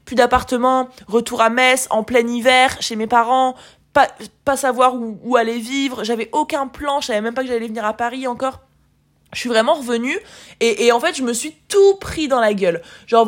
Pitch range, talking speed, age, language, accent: 220-270 Hz, 215 wpm, 20-39, French, French